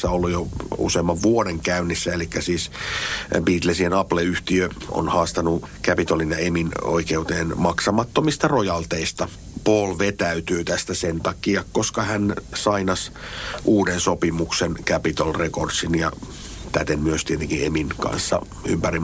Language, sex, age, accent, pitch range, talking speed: Finnish, male, 60-79, native, 85-95 Hz, 115 wpm